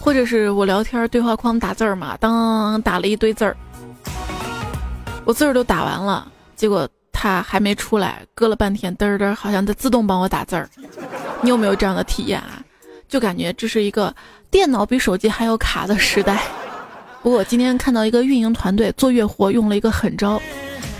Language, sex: Chinese, female